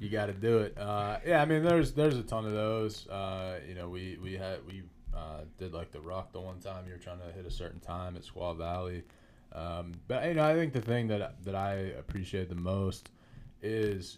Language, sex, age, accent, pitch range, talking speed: English, male, 20-39, American, 85-100 Hz, 240 wpm